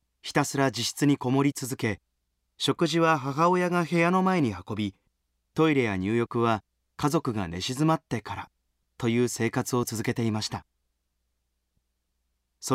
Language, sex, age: Japanese, male, 30-49